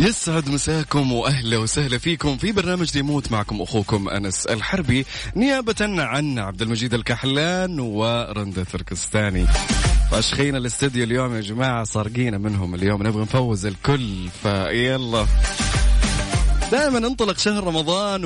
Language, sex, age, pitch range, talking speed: Arabic, male, 30-49, 105-145 Hz, 120 wpm